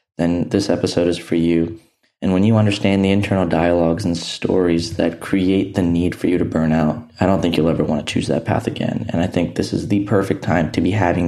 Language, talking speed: English, 245 wpm